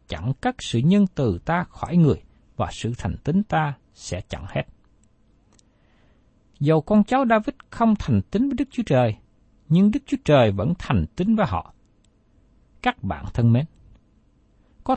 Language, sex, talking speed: Vietnamese, male, 165 wpm